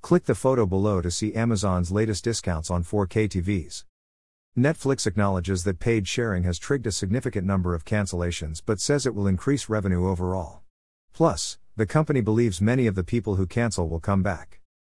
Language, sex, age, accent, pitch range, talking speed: English, male, 50-69, American, 90-115 Hz, 175 wpm